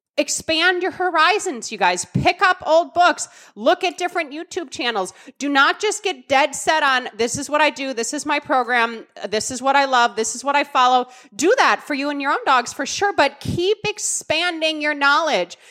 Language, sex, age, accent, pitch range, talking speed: English, female, 30-49, American, 240-330 Hz, 210 wpm